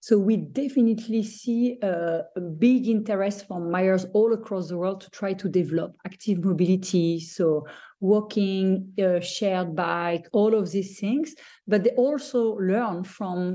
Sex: female